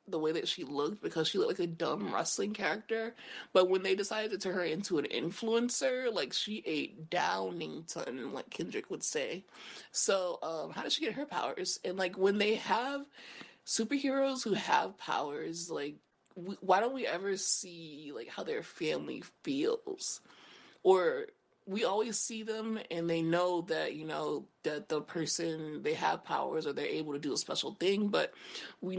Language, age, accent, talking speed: English, 30-49, American, 180 wpm